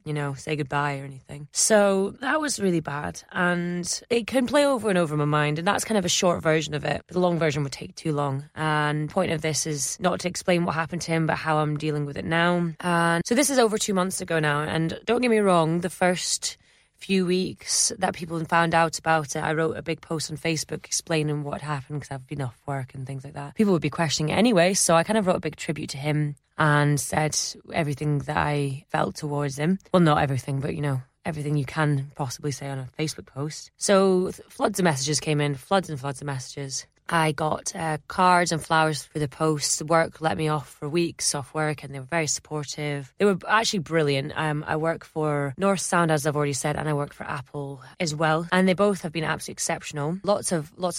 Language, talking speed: English, 240 wpm